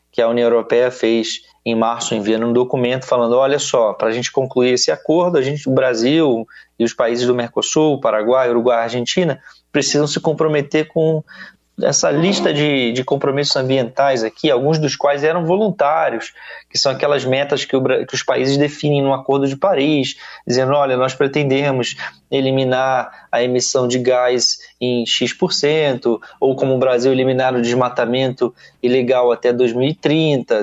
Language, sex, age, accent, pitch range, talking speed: Portuguese, male, 20-39, Brazilian, 125-150 Hz, 160 wpm